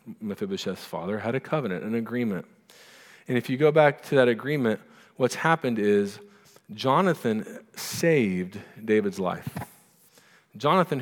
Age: 40-59